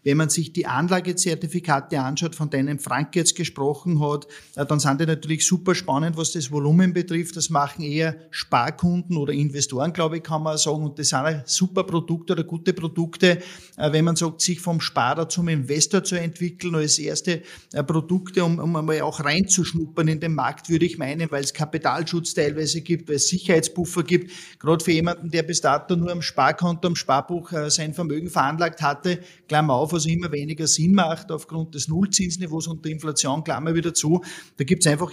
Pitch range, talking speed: 155-175 Hz, 190 wpm